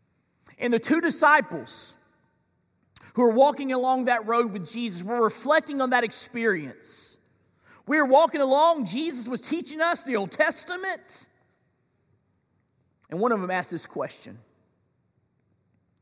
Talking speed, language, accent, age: 130 wpm, English, American, 40-59